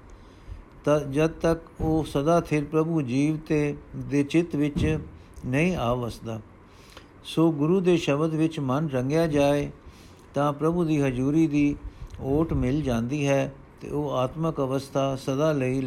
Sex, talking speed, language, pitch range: male, 140 wpm, Punjabi, 125-160 Hz